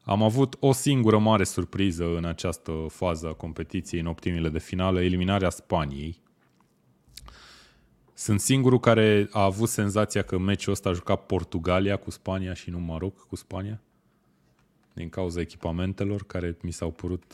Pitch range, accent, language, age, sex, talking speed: 85-110 Hz, native, Romanian, 20-39, male, 150 wpm